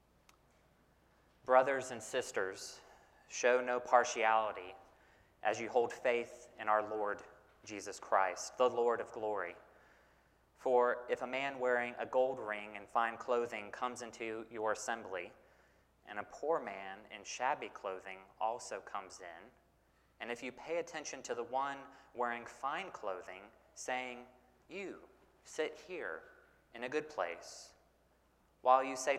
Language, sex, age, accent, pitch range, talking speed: English, male, 30-49, American, 105-130 Hz, 135 wpm